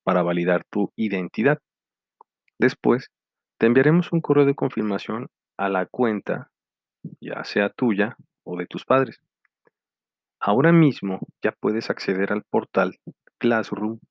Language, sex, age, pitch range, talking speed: Spanish, male, 40-59, 95-120 Hz, 125 wpm